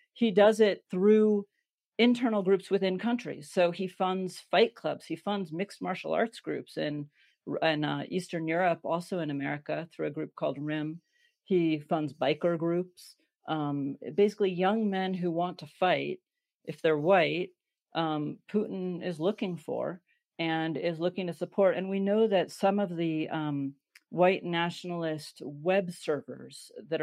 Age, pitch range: 40-59, 155-190 Hz